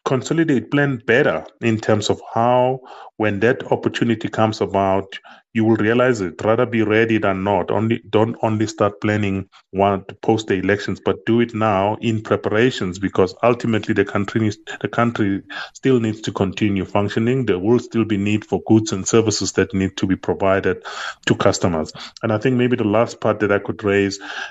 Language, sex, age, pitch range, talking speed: English, male, 30-49, 100-115 Hz, 180 wpm